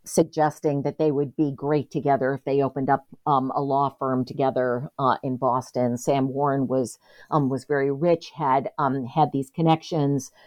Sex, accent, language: female, American, English